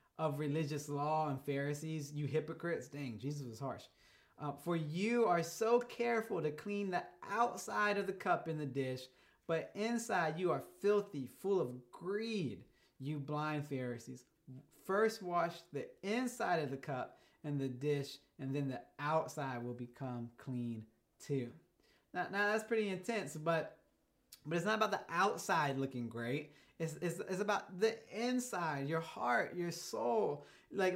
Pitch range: 145-195 Hz